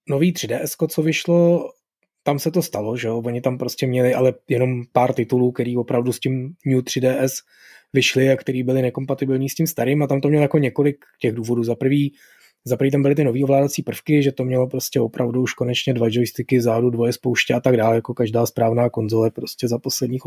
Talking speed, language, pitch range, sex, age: 215 wpm, Czech, 120-135 Hz, male, 20-39